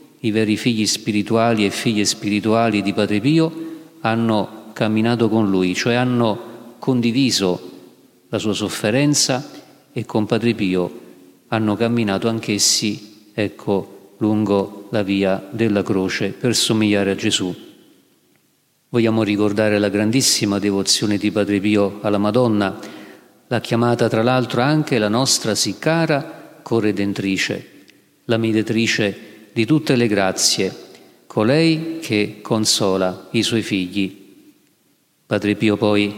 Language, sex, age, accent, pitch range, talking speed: Italian, male, 40-59, native, 105-120 Hz, 120 wpm